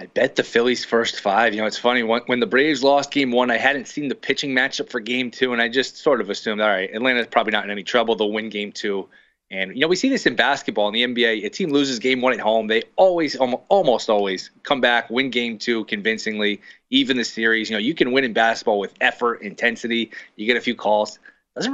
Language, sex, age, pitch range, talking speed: English, male, 20-39, 115-140 Hz, 250 wpm